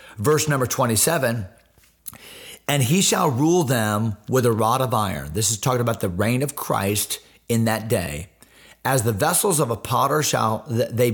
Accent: American